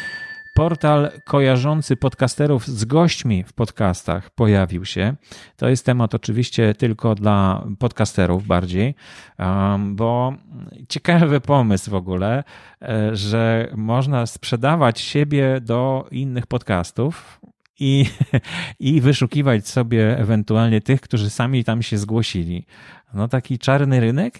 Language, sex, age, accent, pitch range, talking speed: Polish, male, 40-59, native, 105-135 Hz, 110 wpm